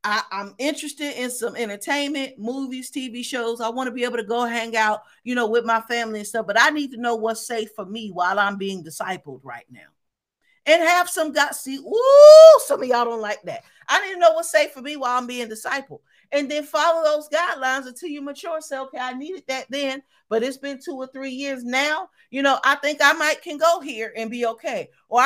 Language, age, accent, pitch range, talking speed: English, 50-69, American, 225-290 Hz, 235 wpm